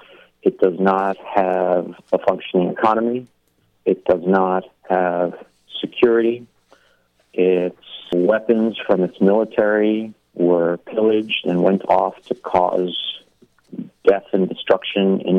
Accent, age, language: American, 40-59, English